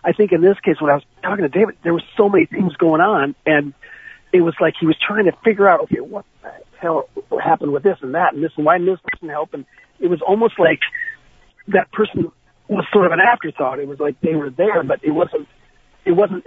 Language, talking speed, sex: English, 250 wpm, male